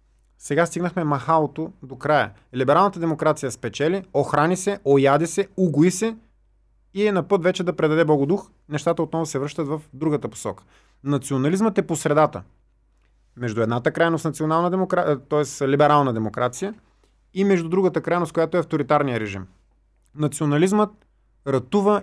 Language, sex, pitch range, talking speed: Bulgarian, male, 135-175 Hz, 135 wpm